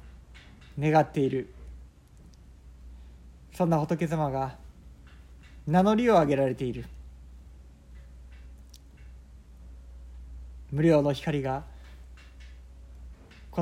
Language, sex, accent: Japanese, male, native